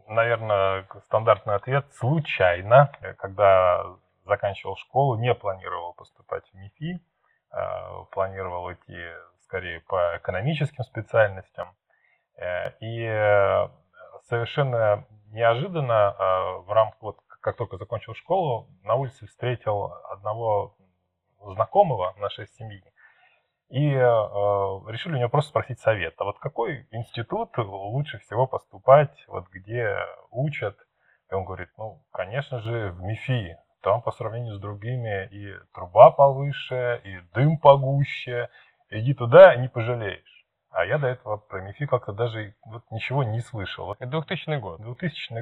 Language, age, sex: Russian, 20-39, male